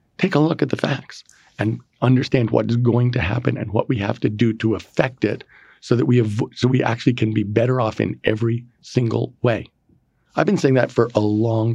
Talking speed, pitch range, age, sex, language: 225 wpm, 110-125 Hz, 50-69, male, English